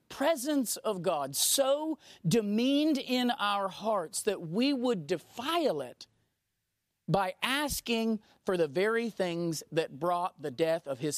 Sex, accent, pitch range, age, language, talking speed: male, American, 180-255 Hz, 40-59, English, 135 wpm